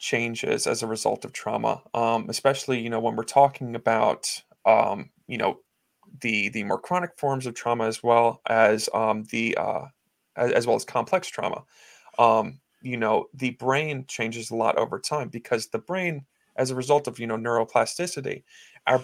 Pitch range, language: 115-145 Hz, English